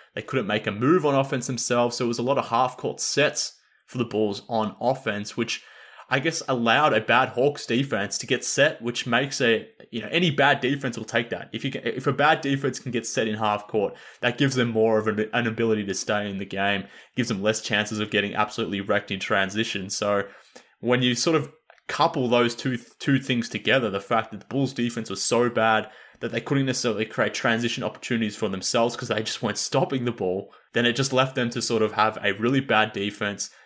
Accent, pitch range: Australian, 105-125 Hz